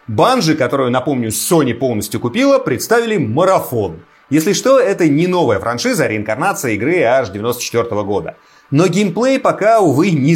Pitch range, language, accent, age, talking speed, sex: 120-200 Hz, Russian, native, 30-49, 145 wpm, male